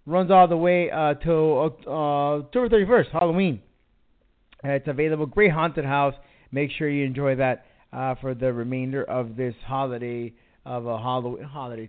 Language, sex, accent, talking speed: English, male, American, 155 wpm